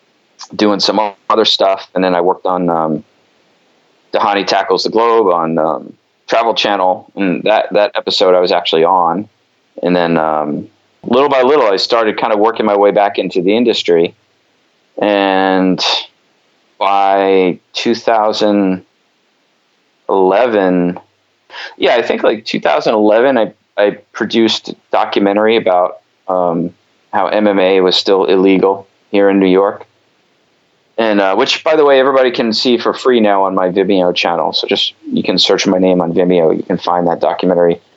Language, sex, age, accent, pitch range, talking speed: English, male, 30-49, American, 90-105 Hz, 155 wpm